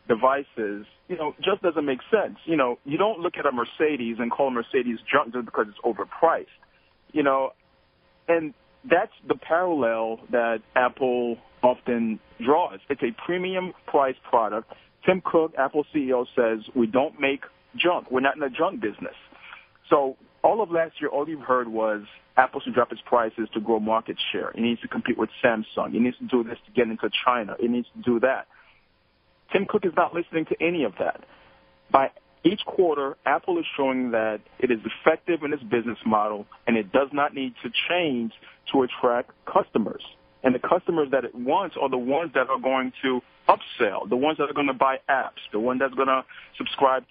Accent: American